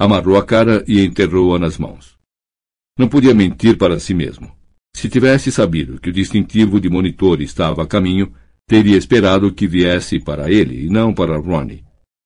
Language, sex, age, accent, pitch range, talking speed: Portuguese, male, 60-79, Brazilian, 80-105 Hz, 165 wpm